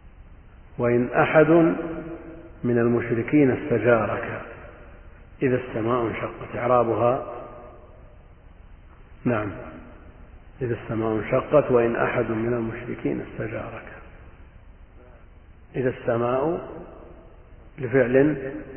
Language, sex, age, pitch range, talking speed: Arabic, male, 50-69, 105-130 Hz, 65 wpm